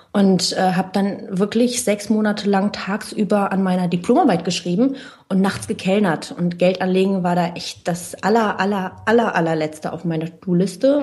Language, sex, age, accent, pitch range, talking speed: German, female, 30-49, German, 175-230 Hz, 160 wpm